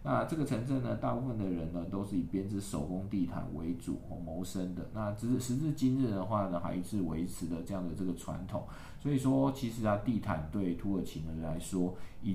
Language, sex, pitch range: Chinese, male, 85-105 Hz